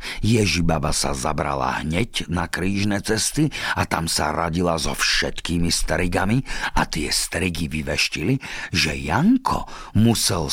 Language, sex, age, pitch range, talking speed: Slovak, male, 50-69, 80-115 Hz, 120 wpm